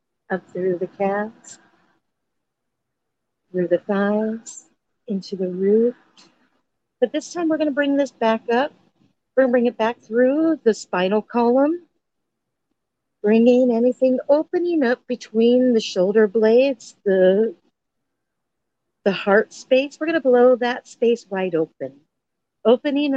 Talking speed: 130 wpm